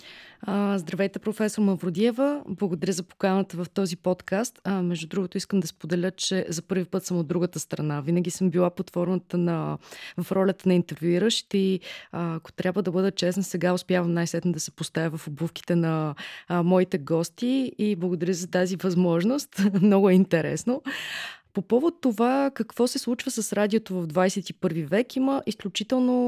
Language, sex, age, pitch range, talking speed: Bulgarian, female, 20-39, 175-210 Hz, 170 wpm